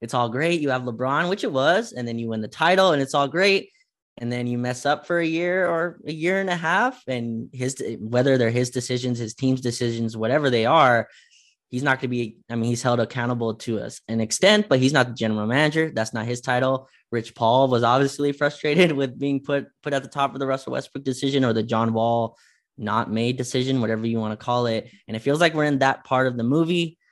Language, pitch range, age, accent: English, 115-150 Hz, 20-39, American